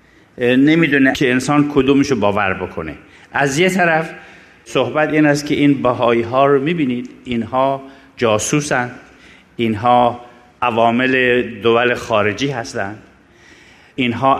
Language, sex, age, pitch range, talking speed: Persian, male, 50-69, 115-150 Hz, 115 wpm